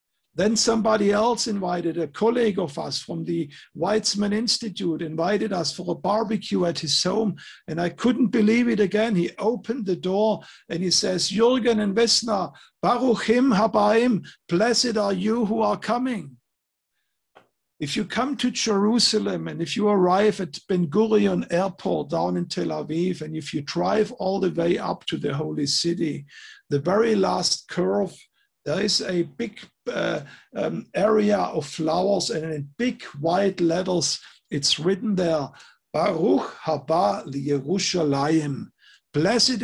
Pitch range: 170-215 Hz